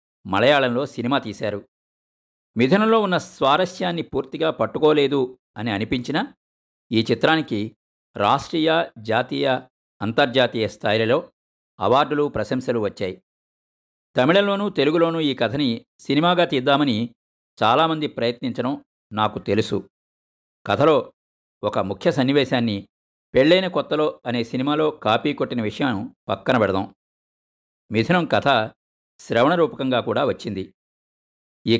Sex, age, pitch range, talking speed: male, 50-69, 105-150 Hz, 90 wpm